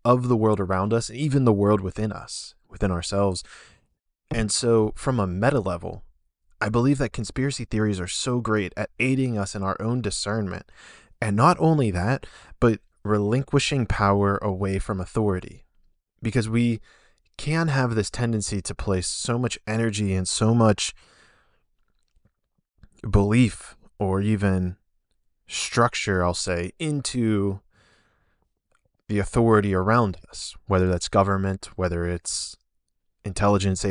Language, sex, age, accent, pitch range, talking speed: English, male, 20-39, American, 90-110 Hz, 130 wpm